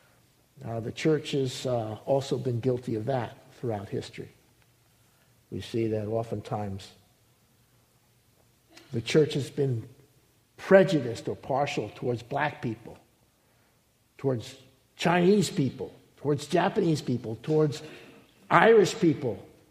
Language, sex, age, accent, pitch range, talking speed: English, male, 60-79, American, 120-170 Hz, 105 wpm